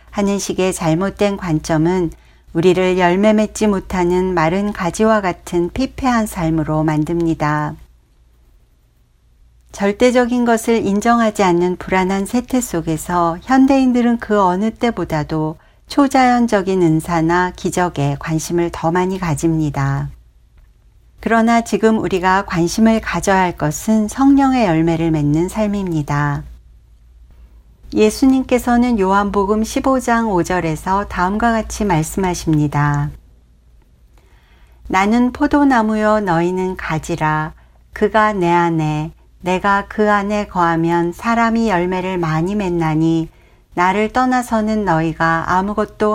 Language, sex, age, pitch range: Korean, female, 60-79, 160-215 Hz